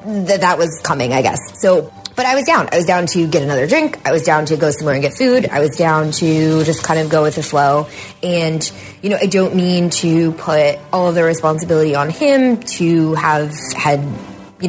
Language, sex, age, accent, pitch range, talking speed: English, female, 20-39, American, 155-185 Hz, 225 wpm